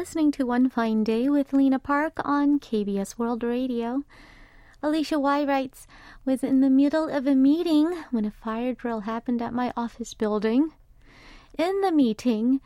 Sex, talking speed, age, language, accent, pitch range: female, 160 wpm, 30-49, English, American, 230-295 Hz